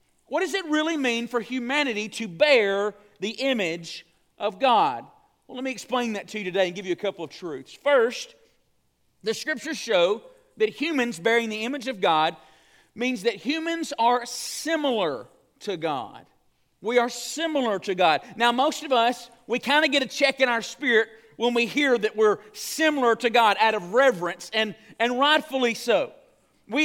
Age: 40-59